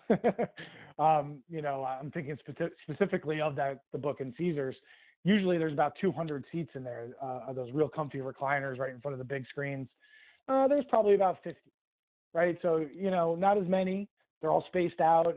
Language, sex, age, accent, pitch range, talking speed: English, male, 20-39, American, 135-165 Hz, 190 wpm